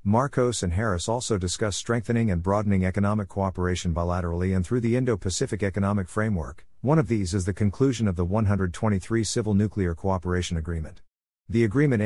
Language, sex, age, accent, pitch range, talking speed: English, male, 50-69, American, 90-110 Hz, 160 wpm